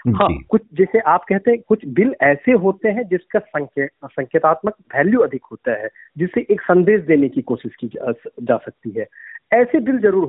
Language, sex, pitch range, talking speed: Hindi, male, 120-155 Hz, 180 wpm